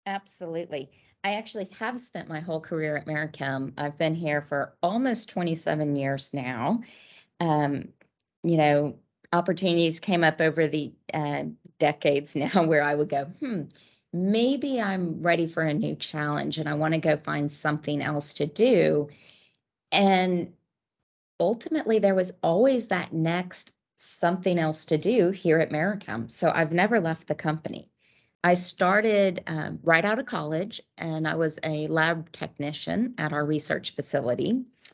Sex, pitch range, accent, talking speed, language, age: female, 150-190 Hz, American, 150 wpm, English, 30-49